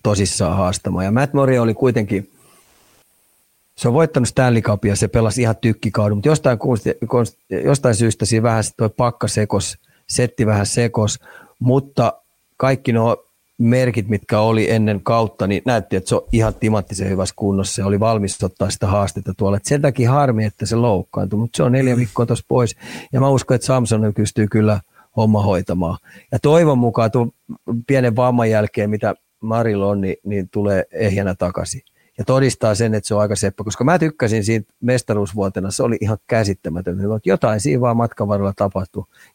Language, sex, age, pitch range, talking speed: Finnish, male, 30-49, 100-120 Hz, 170 wpm